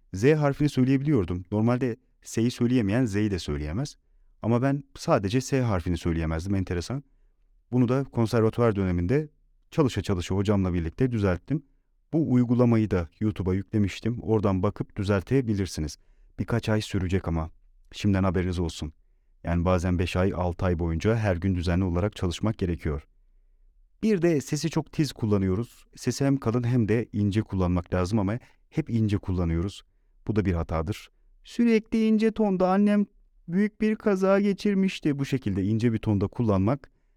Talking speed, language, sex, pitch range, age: 145 wpm, Turkish, male, 90-130 Hz, 40-59